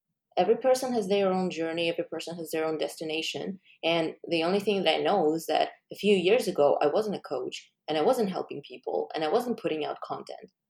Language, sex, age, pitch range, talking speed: English, female, 20-39, 155-195 Hz, 225 wpm